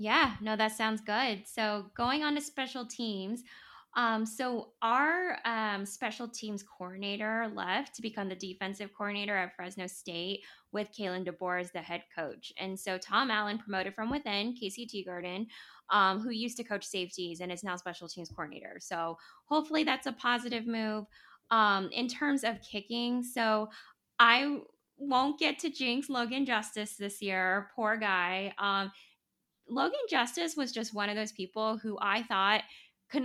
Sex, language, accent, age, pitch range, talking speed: female, English, American, 10-29, 195-240 Hz, 165 wpm